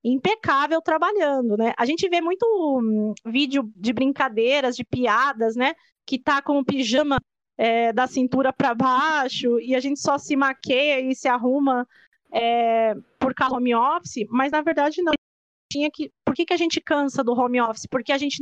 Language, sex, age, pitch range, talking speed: Portuguese, female, 20-39, 245-310 Hz, 180 wpm